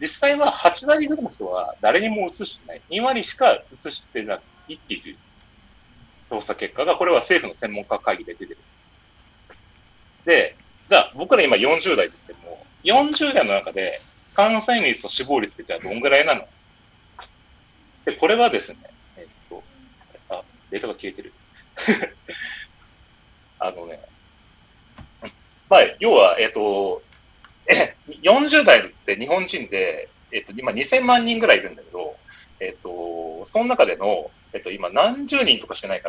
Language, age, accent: Japanese, 40-59, native